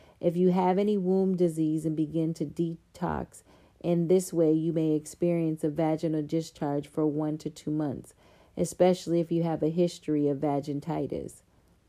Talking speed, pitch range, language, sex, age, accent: 160 wpm, 150-175 Hz, English, female, 40-59, American